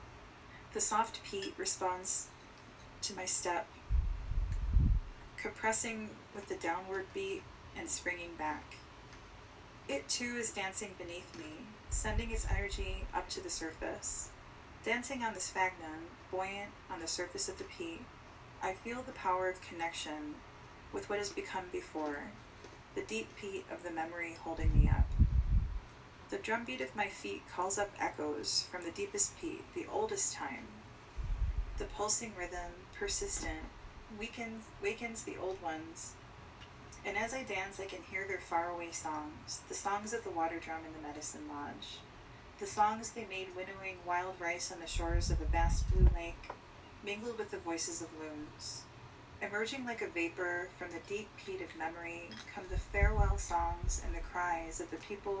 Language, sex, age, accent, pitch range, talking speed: English, female, 30-49, American, 150-220 Hz, 155 wpm